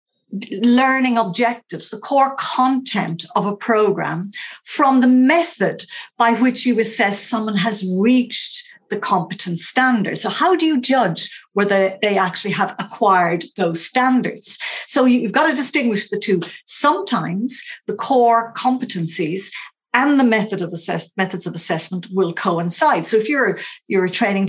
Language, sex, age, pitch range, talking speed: English, female, 50-69, 185-250 Hz, 145 wpm